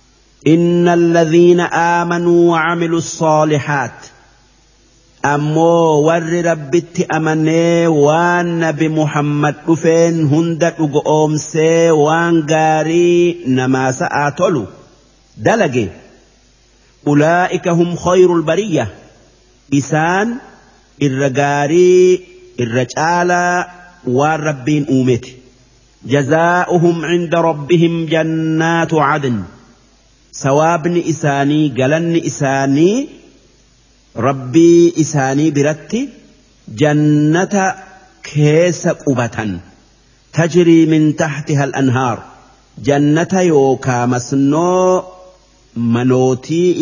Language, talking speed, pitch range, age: Arabic, 65 wpm, 140-170 Hz, 50-69